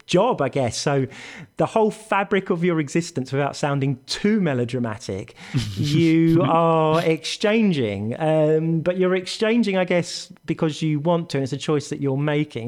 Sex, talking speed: male, 155 wpm